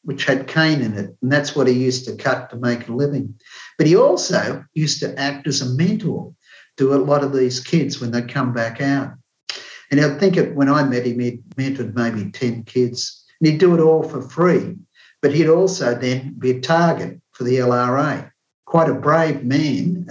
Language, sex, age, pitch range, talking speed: English, male, 50-69, 125-150 Hz, 210 wpm